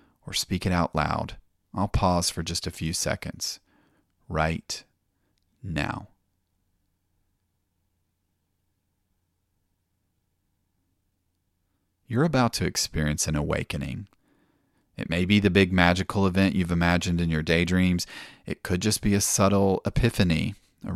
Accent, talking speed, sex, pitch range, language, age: American, 115 wpm, male, 85-100 Hz, English, 40-59